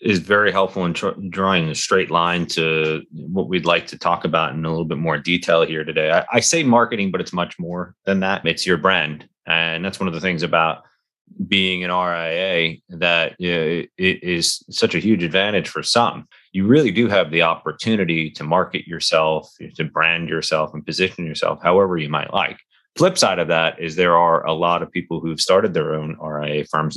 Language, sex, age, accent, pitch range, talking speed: English, male, 30-49, American, 80-95 Hz, 200 wpm